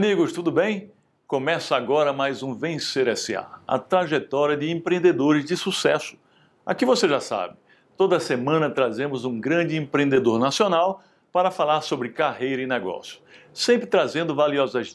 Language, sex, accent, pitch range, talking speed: Portuguese, male, Brazilian, 140-185 Hz, 140 wpm